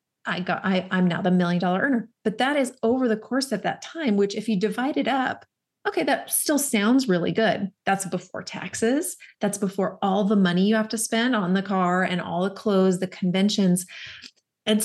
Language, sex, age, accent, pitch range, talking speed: English, female, 30-49, American, 185-220 Hz, 210 wpm